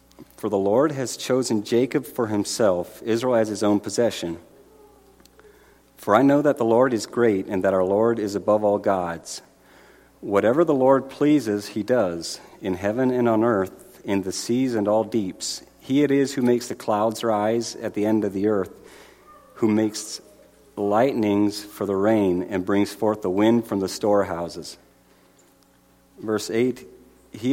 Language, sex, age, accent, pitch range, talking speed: English, male, 50-69, American, 100-120 Hz, 170 wpm